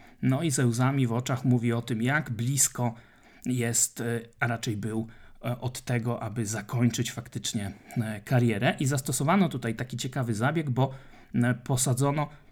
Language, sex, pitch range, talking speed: Polish, male, 120-145 Hz, 140 wpm